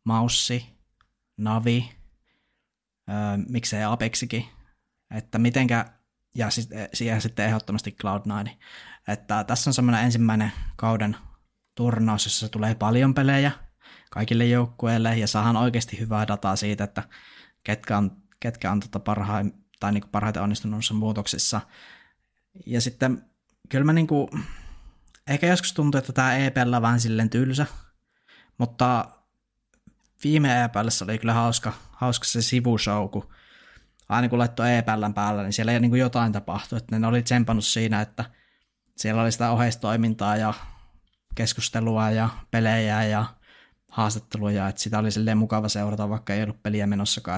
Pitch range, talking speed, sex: 105-120 Hz, 135 wpm, male